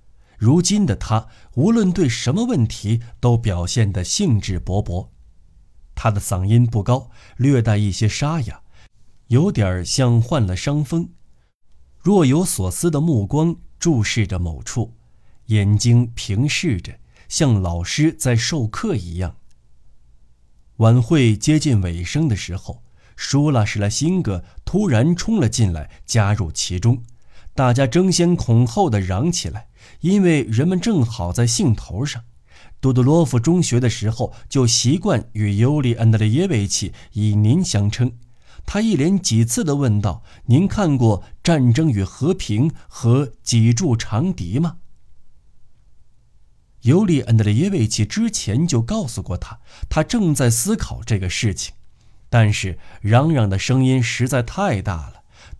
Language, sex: Chinese, male